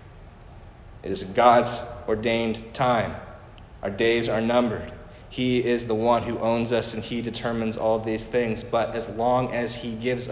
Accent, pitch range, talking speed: American, 95-120 Hz, 165 wpm